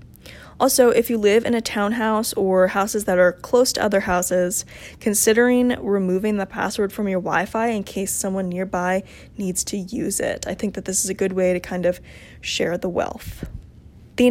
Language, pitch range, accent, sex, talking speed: English, 185-230 Hz, American, female, 190 wpm